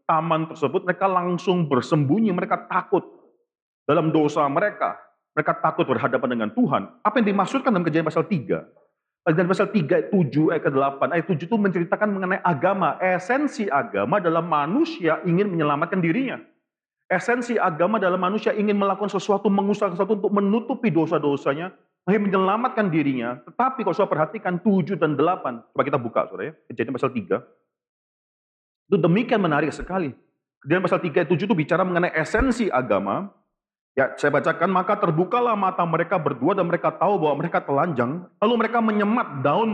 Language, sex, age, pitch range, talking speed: Indonesian, male, 40-59, 160-205 Hz, 155 wpm